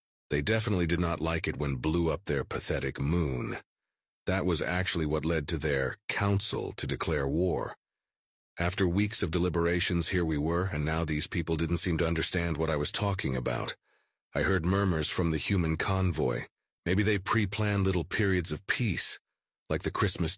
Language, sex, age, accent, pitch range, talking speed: English, male, 40-59, American, 75-95 Hz, 175 wpm